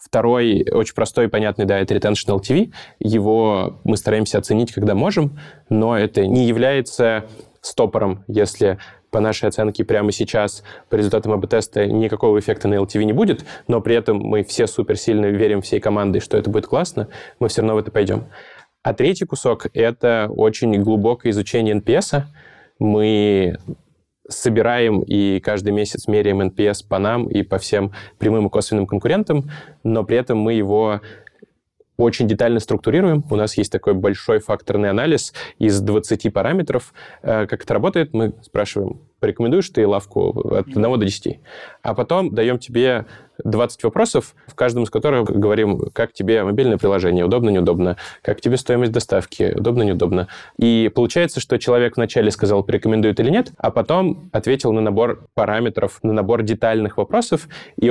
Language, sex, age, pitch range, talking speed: Russian, male, 20-39, 105-120 Hz, 160 wpm